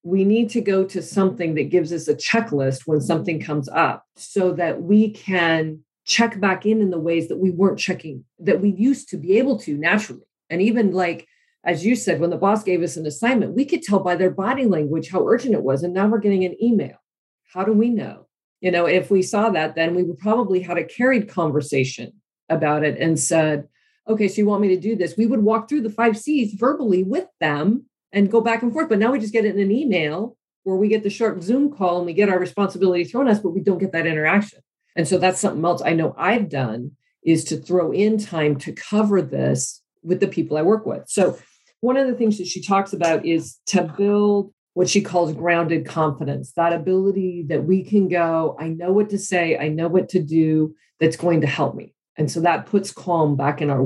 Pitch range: 165-210 Hz